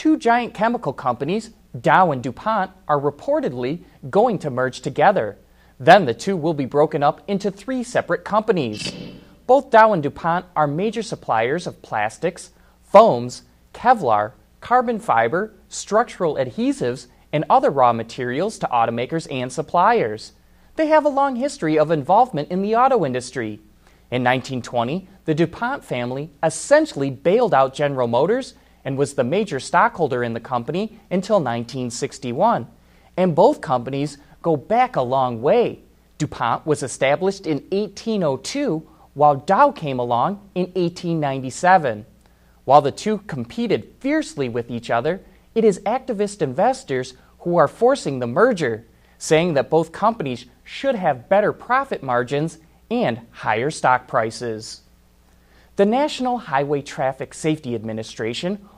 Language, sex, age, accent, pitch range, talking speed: English, male, 30-49, American, 125-200 Hz, 135 wpm